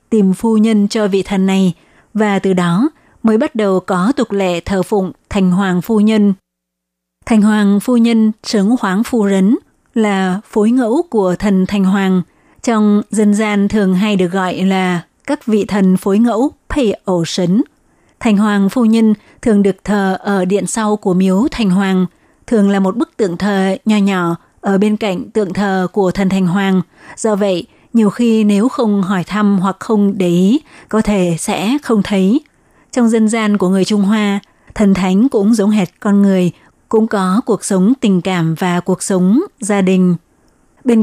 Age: 20-39